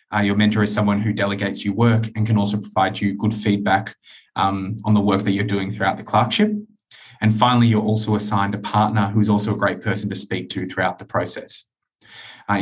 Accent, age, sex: Australian, 20-39, male